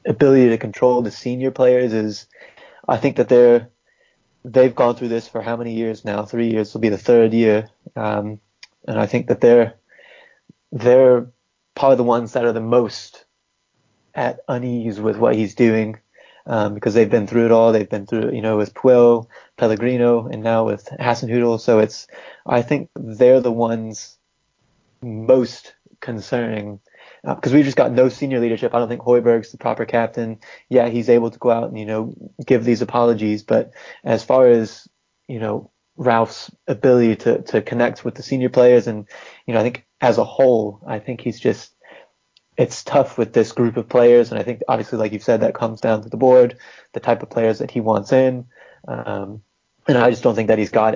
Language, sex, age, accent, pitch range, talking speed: English, male, 20-39, American, 110-125 Hz, 195 wpm